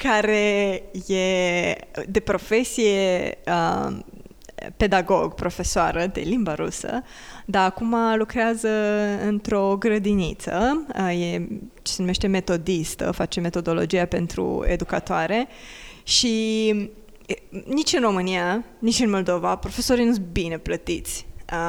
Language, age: Romanian, 20-39